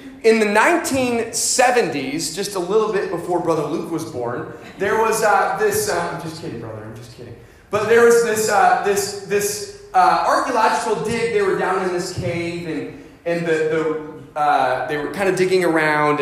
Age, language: 30-49, English